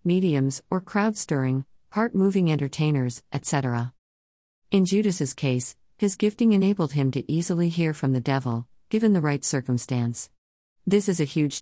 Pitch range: 130-165 Hz